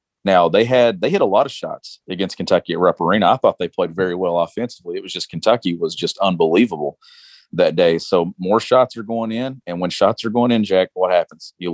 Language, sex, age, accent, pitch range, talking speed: English, male, 40-59, American, 90-115 Hz, 235 wpm